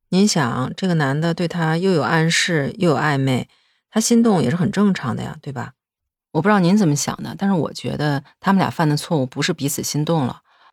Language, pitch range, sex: Chinese, 150-205 Hz, female